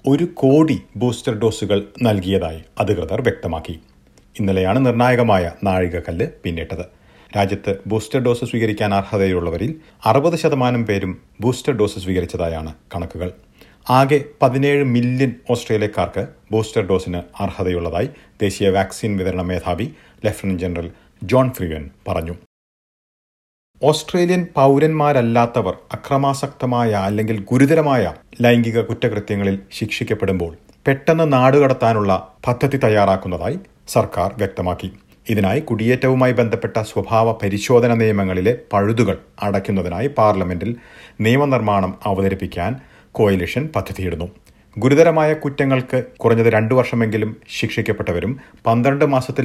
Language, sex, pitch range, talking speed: Malayalam, male, 95-125 Hz, 90 wpm